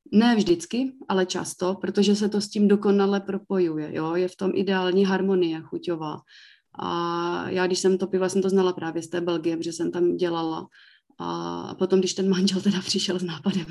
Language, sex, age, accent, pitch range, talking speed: Czech, female, 30-49, native, 165-190 Hz, 195 wpm